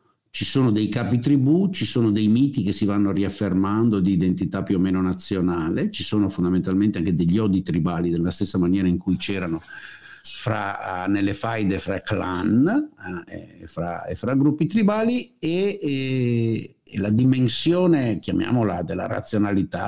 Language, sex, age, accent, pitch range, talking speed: Italian, male, 50-69, native, 95-125 Hz, 150 wpm